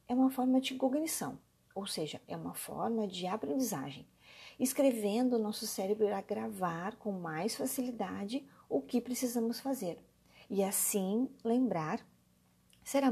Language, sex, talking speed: Portuguese, female, 130 wpm